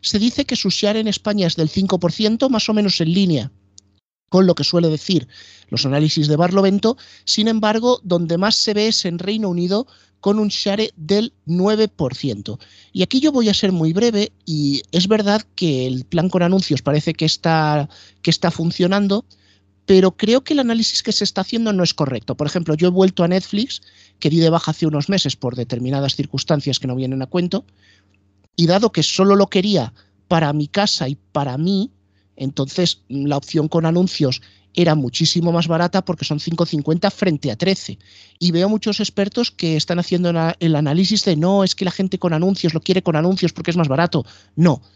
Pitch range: 140-195 Hz